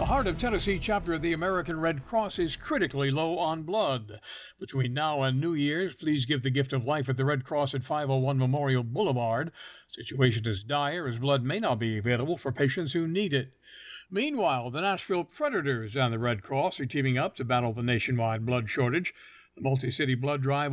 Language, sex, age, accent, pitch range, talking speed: English, male, 60-79, American, 130-175 Hz, 200 wpm